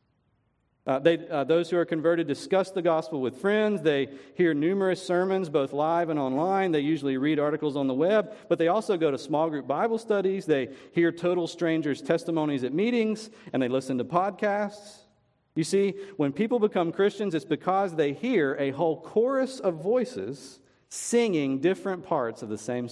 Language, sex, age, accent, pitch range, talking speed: English, male, 40-59, American, 130-190 Hz, 180 wpm